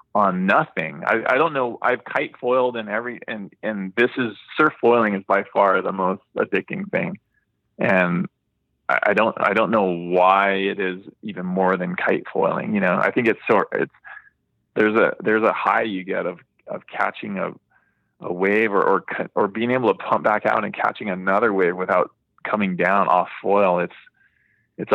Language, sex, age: English, male, 20-39